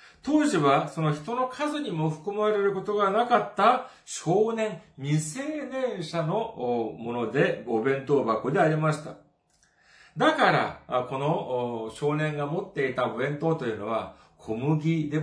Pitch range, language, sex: 125-200 Hz, Japanese, male